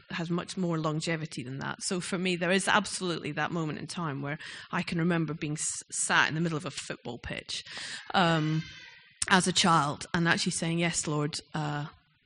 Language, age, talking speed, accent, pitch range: English, 30-49, 190 wpm, British, 160-195 Hz